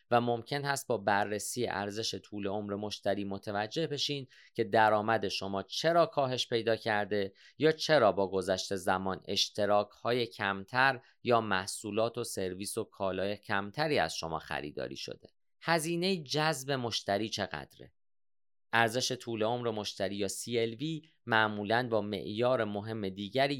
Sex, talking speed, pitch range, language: male, 130 wpm, 100-130 Hz, Persian